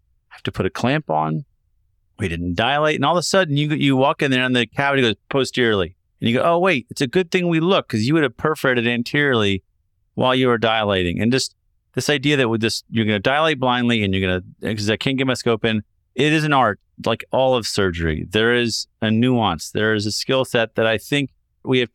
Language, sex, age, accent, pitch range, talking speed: English, male, 30-49, American, 100-130 Hz, 245 wpm